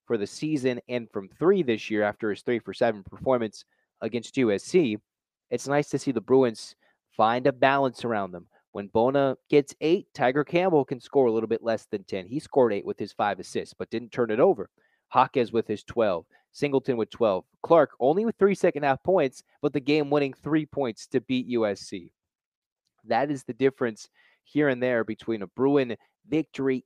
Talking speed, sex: 190 wpm, male